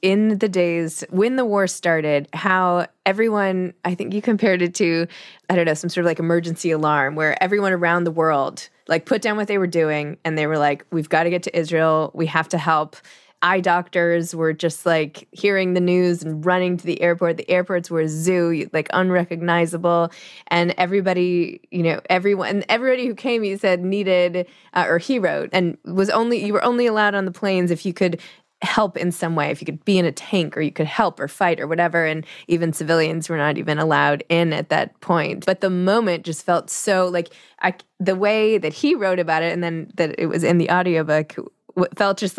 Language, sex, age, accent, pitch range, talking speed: English, female, 20-39, American, 165-195 Hz, 215 wpm